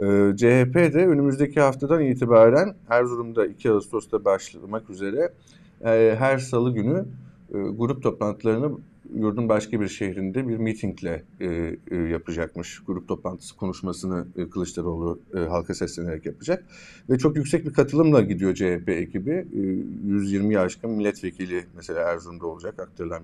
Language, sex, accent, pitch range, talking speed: Turkish, male, native, 95-120 Hz, 115 wpm